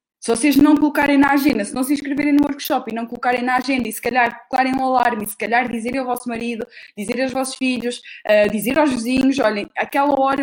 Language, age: Portuguese, 20-39